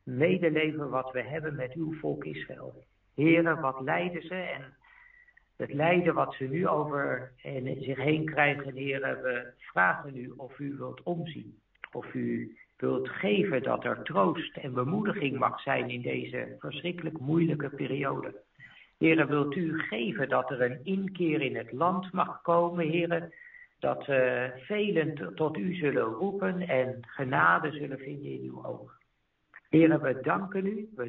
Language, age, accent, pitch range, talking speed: Dutch, 60-79, Dutch, 135-170 Hz, 150 wpm